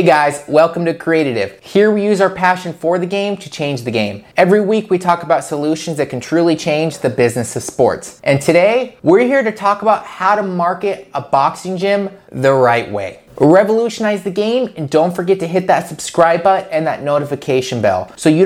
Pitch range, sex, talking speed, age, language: 130-190 Hz, male, 210 wpm, 30-49, English